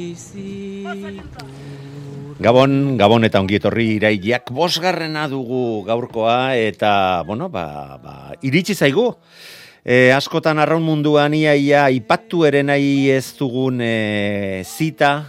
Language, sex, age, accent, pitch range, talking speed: Spanish, male, 40-59, Spanish, 95-140 Hz, 100 wpm